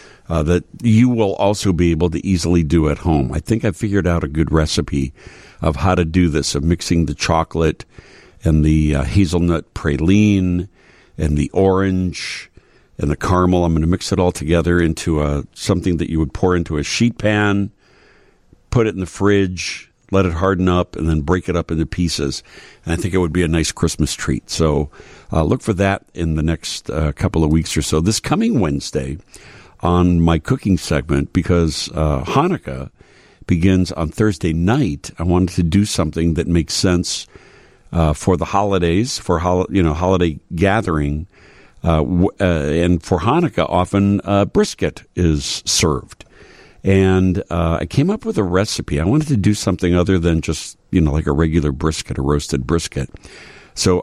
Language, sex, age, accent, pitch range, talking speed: English, male, 60-79, American, 80-95 Hz, 180 wpm